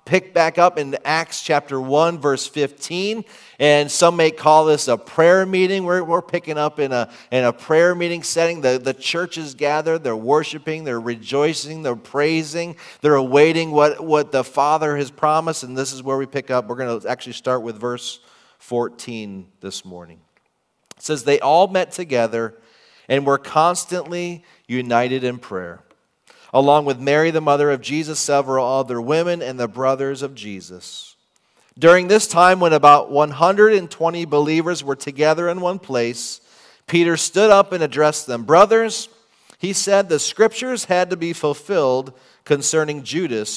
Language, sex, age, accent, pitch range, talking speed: English, male, 40-59, American, 135-170 Hz, 165 wpm